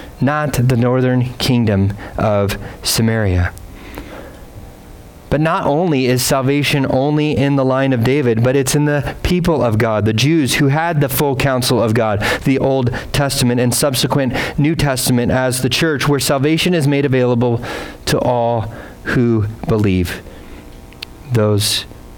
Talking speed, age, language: 145 wpm, 40-59, English